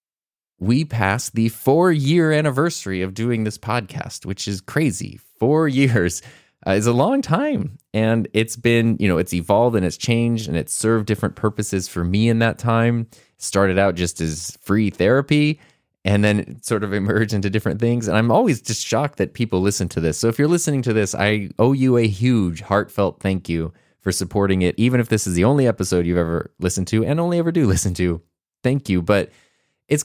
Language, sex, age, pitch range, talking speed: English, male, 20-39, 95-120 Hz, 200 wpm